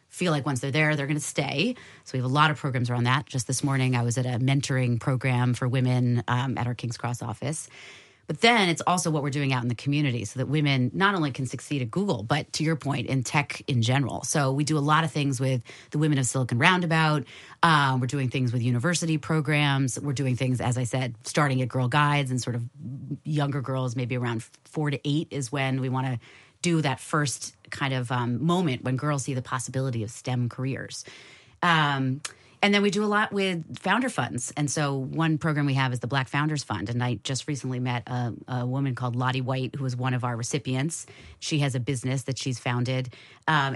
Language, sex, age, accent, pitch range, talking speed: English, female, 30-49, American, 125-150 Hz, 230 wpm